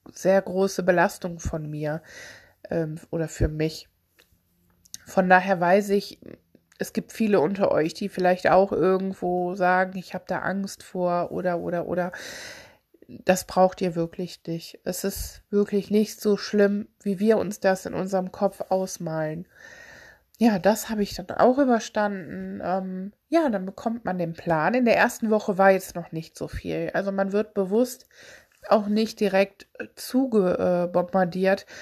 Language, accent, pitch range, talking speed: German, German, 180-210 Hz, 155 wpm